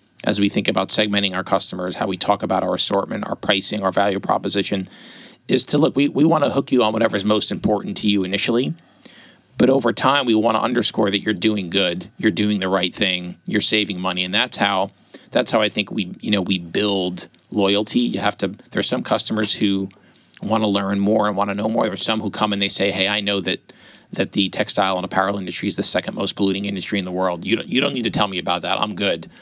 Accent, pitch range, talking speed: American, 95-110 Hz, 245 wpm